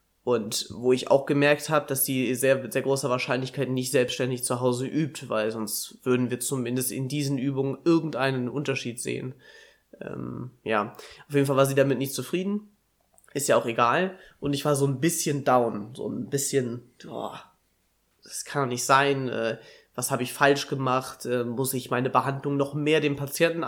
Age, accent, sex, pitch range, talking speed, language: 20-39, German, male, 125-150 Hz, 180 wpm, German